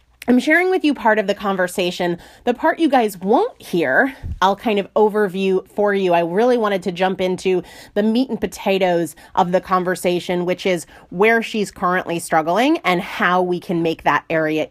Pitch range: 175-235 Hz